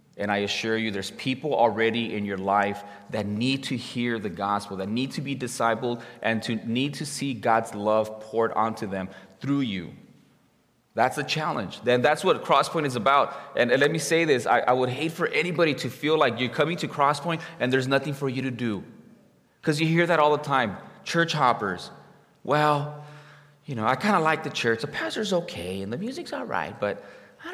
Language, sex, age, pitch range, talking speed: English, male, 30-49, 115-165 Hz, 210 wpm